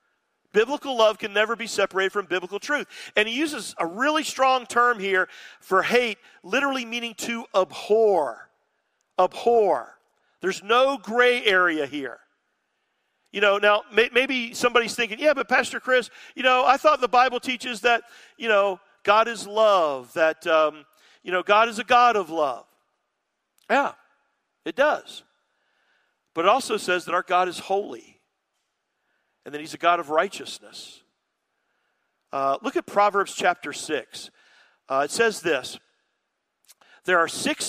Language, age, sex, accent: English, 50-69, male, American